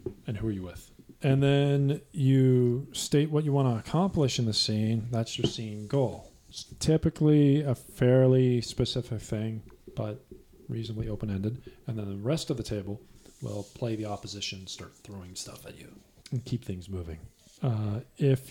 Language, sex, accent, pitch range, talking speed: English, male, American, 110-135 Hz, 170 wpm